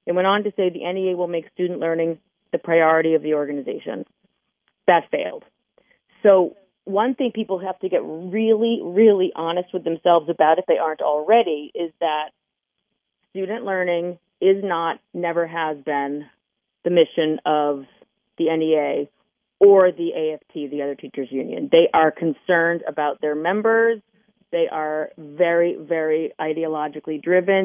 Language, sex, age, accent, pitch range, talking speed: English, female, 30-49, American, 155-195 Hz, 150 wpm